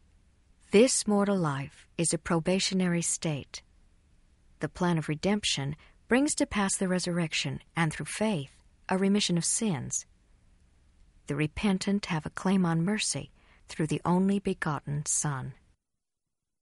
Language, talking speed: English, 125 wpm